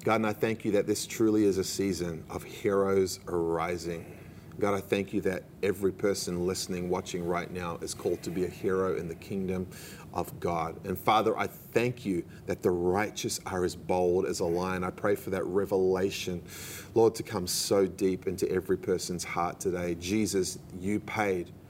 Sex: male